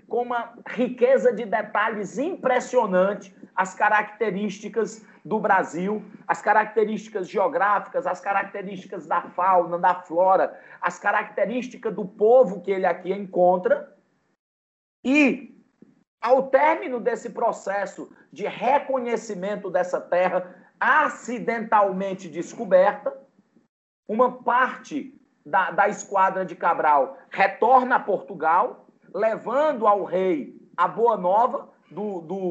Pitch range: 195-250 Hz